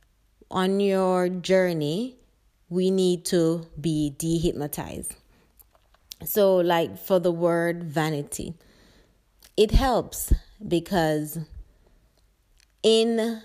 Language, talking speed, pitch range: English, 80 wpm, 160-190 Hz